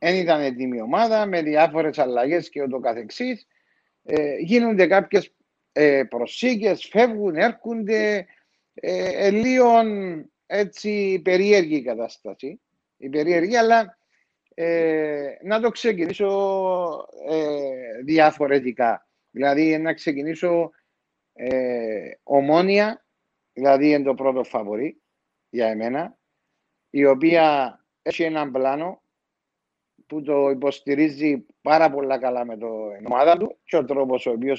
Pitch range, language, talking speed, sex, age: 135-190 Hz, Greek, 115 wpm, male, 50-69